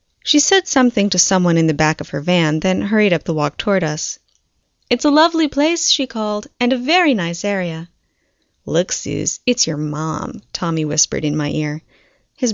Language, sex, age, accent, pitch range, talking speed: English, female, 10-29, American, 165-225 Hz, 190 wpm